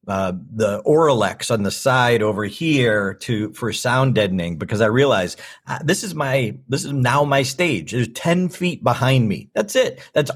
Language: English